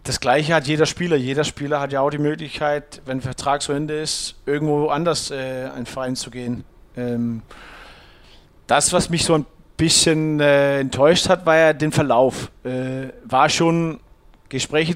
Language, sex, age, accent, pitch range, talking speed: German, male, 40-59, German, 130-150 Hz, 175 wpm